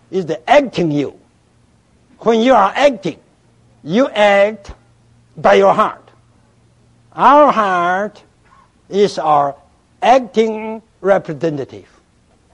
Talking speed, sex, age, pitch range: 90 wpm, male, 60-79, 160-240 Hz